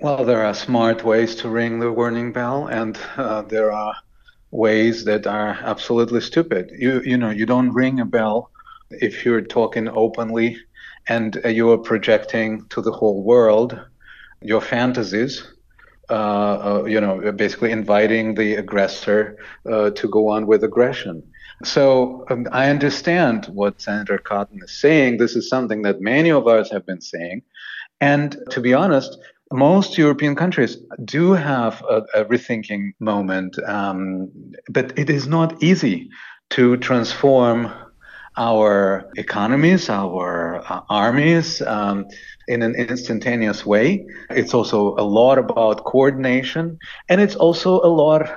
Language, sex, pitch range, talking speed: English, male, 105-140 Hz, 145 wpm